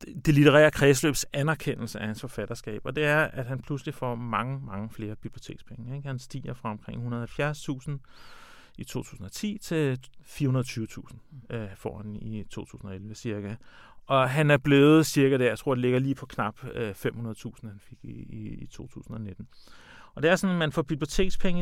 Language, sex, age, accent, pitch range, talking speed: Danish, male, 40-59, native, 115-155 Hz, 160 wpm